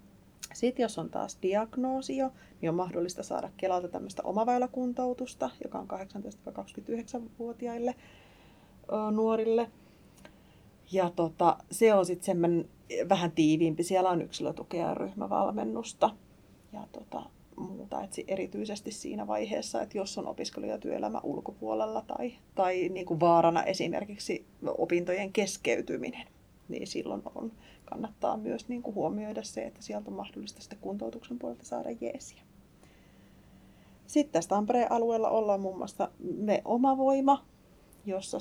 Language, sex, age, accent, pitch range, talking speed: Finnish, female, 30-49, native, 185-230 Hz, 110 wpm